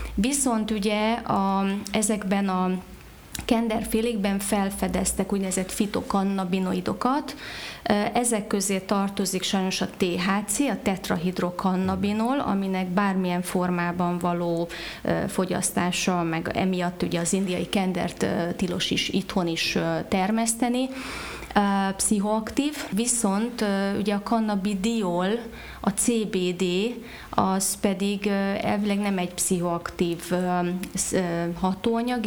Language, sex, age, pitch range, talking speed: Hungarian, female, 30-49, 180-220 Hz, 85 wpm